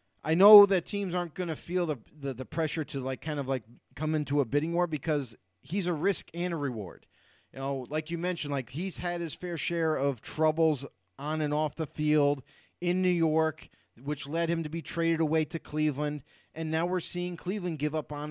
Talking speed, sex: 220 wpm, male